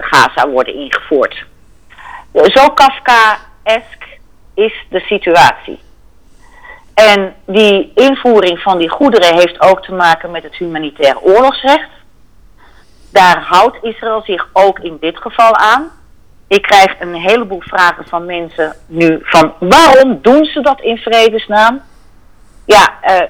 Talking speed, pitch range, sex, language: 120 wpm, 165-225 Hz, female, Dutch